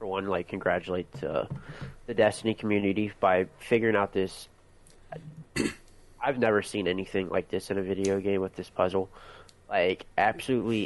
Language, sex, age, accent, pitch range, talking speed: English, male, 20-39, American, 90-110 Hz, 145 wpm